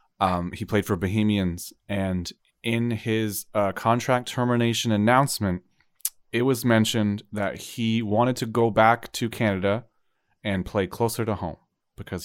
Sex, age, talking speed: male, 30-49, 140 wpm